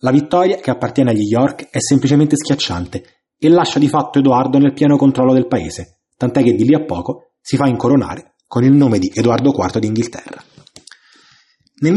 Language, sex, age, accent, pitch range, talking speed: Italian, male, 20-39, native, 130-160 Hz, 180 wpm